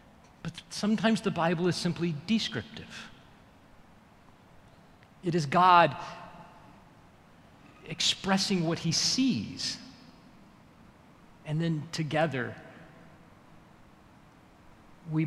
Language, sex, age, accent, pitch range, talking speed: English, male, 40-59, American, 135-180 Hz, 70 wpm